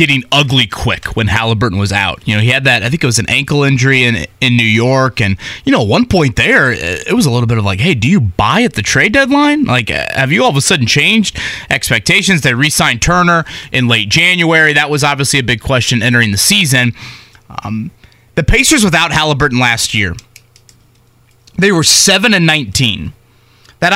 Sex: male